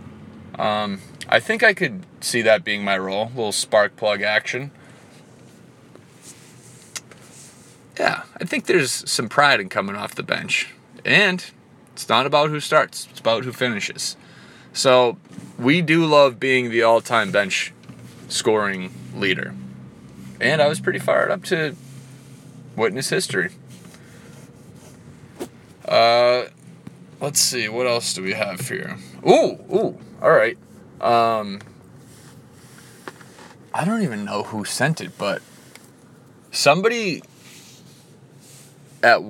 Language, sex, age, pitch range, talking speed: English, male, 30-49, 115-160 Hz, 120 wpm